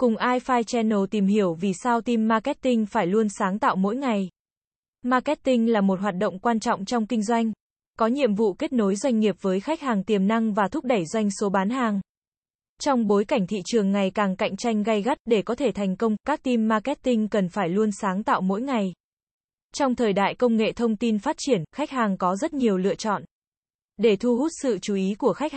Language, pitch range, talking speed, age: Vietnamese, 205-245 Hz, 220 wpm, 20-39